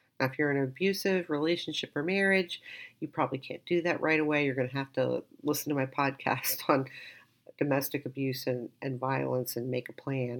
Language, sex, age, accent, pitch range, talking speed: English, female, 50-69, American, 135-180 Hz, 200 wpm